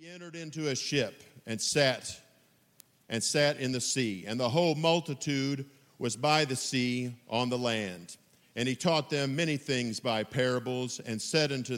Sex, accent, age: male, American, 50-69